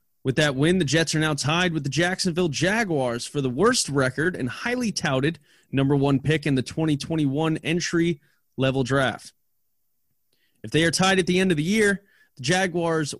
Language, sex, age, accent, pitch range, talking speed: English, male, 20-39, American, 135-190 Hz, 180 wpm